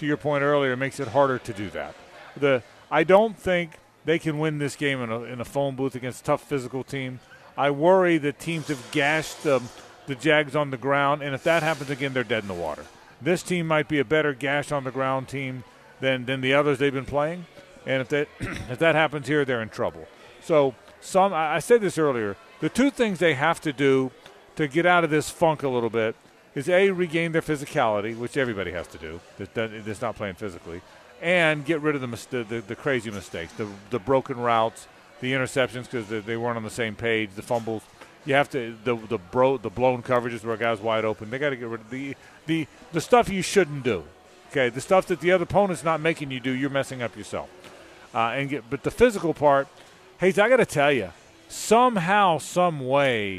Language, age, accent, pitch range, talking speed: English, 40-59, American, 120-155 Hz, 225 wpm